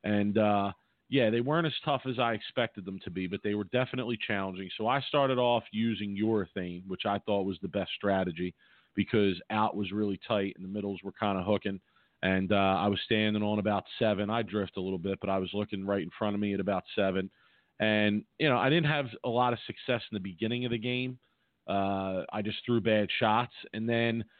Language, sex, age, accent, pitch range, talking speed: English, male, 40-59, American, 100-125 Hz, 230 wpm